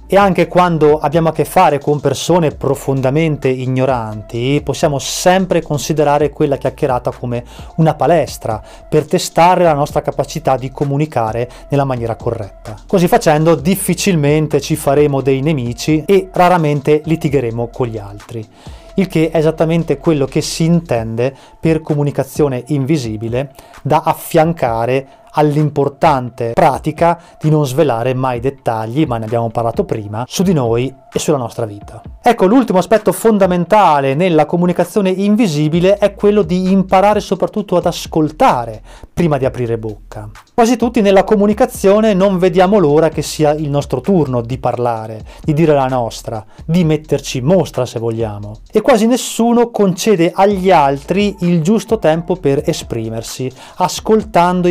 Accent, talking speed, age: native, 140 wpm, 20-39